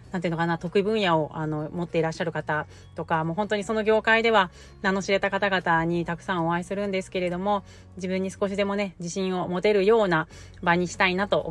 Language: Japanese